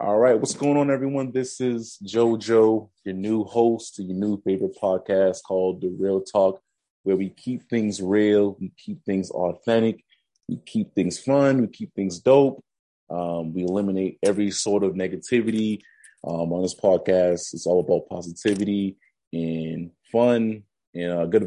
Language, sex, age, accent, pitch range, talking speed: English, male, 20-39, American, 90-105 Hz, 155 wpm